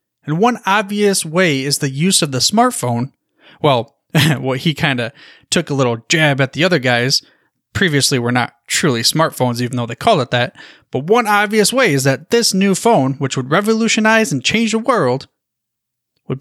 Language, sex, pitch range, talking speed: English, male, 135-200 Hz, 190 wpm